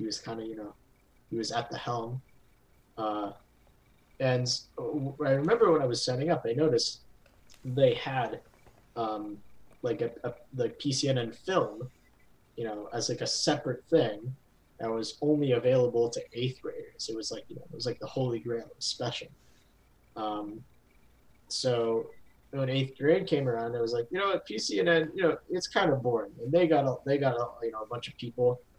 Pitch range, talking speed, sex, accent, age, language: 115-150 Hz, 190 wpm, male, American, 20-39, English